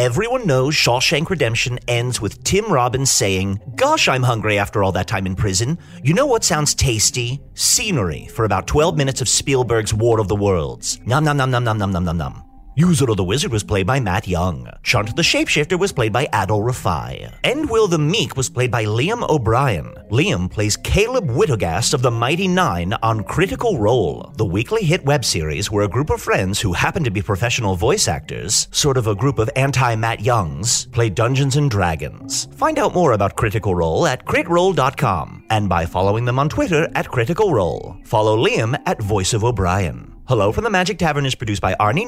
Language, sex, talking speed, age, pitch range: English, male, 195 wpm, 40-59, 100-145 Hz